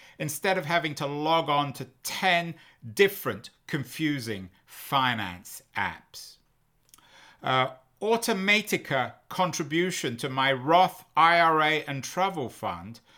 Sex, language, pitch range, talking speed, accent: male, English, 140-195 Hz, 100 wpm, British